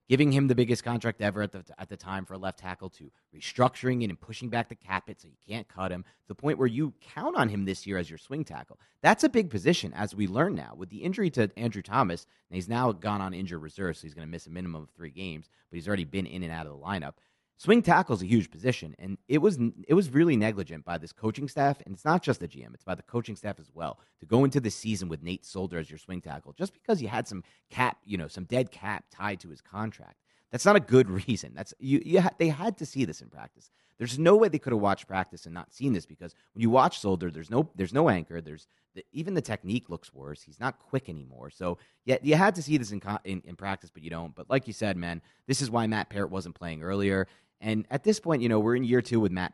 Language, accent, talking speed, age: English, American, 280 wpm, 30-49